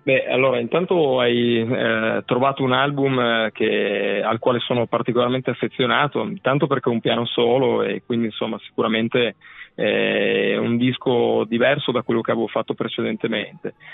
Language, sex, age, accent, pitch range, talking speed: Italian, male, 20-39, native, 115-130 Hz, 150 wpm